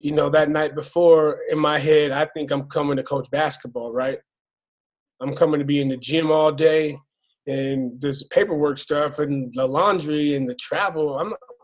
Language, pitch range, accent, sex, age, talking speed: English, 145-170 Hz, American, male, 20-39, 185 wpm